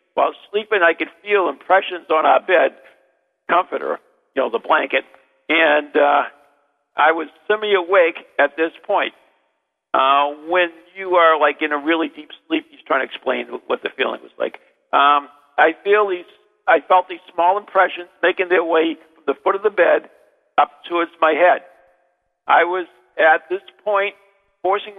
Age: 50-69